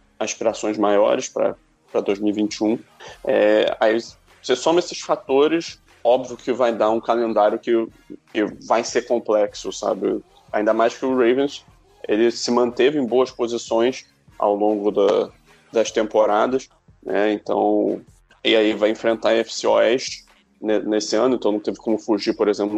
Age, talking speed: 20-39, 150 wpm